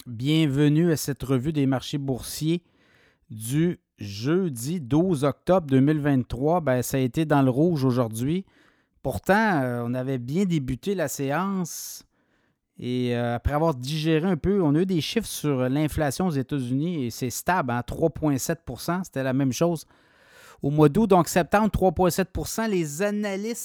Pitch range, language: 135-170 Hz, French